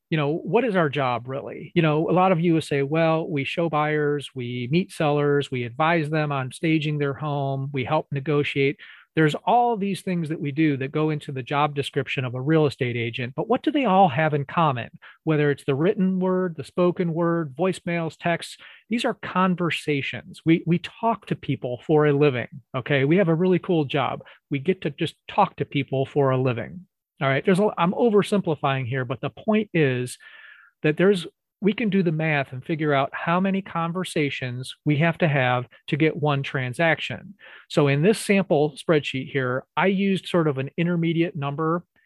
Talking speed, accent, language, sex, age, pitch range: 200 wpm, American, English, male, 40-59, 140-175 Hz